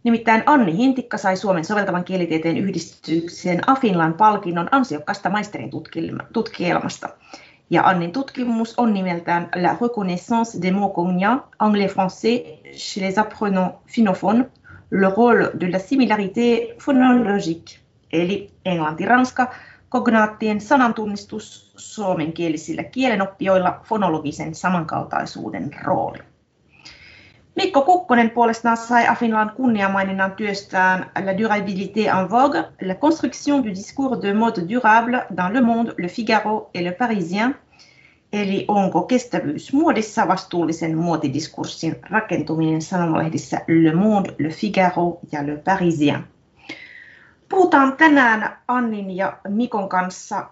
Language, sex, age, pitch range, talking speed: Finnish, female, 30-49, 175-235 Hz, 105 wpm